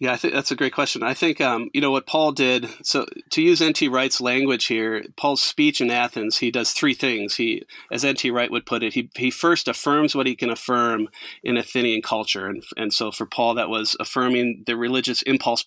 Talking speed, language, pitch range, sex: 225 wpm, English, 120-185 Hz, male